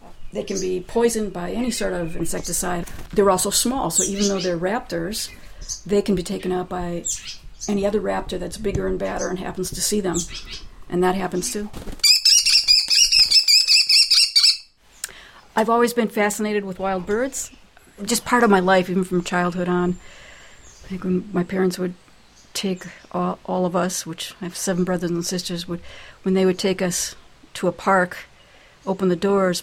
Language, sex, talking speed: English, female, 170 wpm